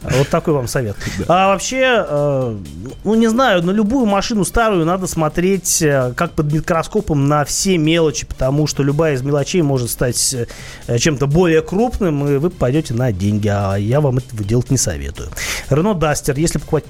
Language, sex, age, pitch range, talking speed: Russian, male, 30-49, 130-170 Hz, 165 wpm